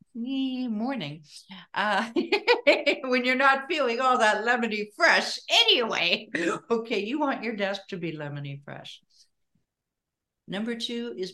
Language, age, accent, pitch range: English, 60-79, American, 145-195 Hz